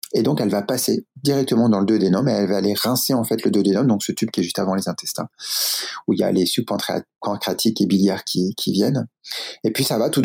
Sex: male